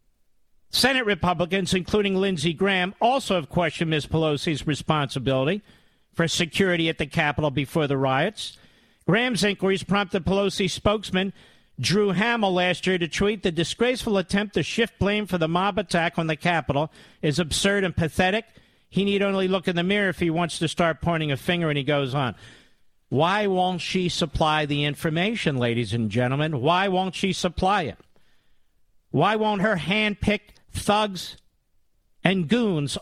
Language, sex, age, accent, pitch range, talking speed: English, male, 50-69, American, 145-205 Hz, 160 wpm